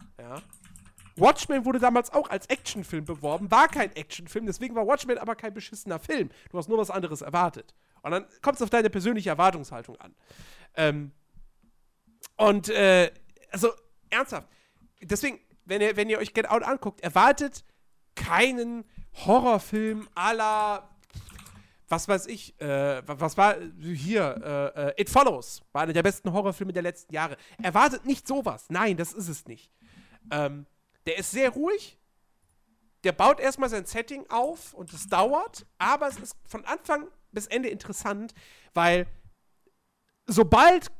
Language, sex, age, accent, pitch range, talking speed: German, male, 40-59, German, 165-235 Hz, 150 wpm